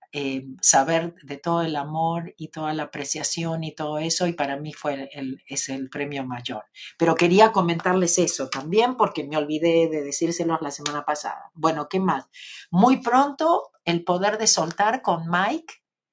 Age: 50-69